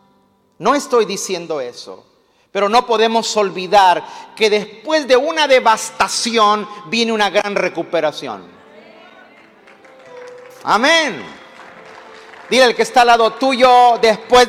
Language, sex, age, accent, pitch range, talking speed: Spanish, male, 50-69, Mexican, 210-255 Hz, 110 wpm